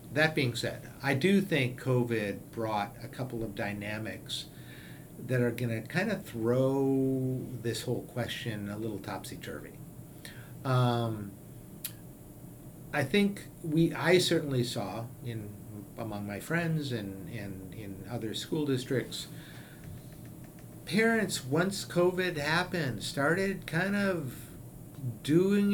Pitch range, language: 120-160 Hz, English